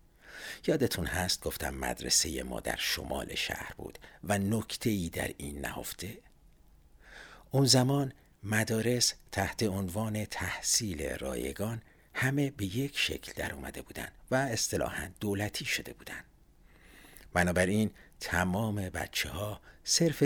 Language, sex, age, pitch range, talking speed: Persian, male, 60-79, 85-125 Hz, 115 wpm